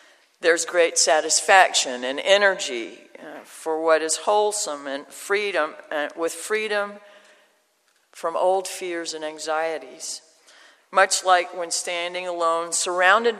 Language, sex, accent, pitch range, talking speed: English, female, American, 125-175 Hz, 105 wpm